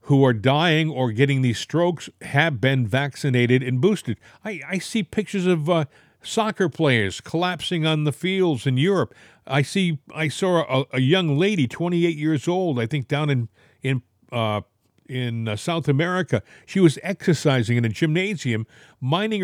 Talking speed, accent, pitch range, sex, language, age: 165 wpm, American, 130-175 Hz, male, English, 50-69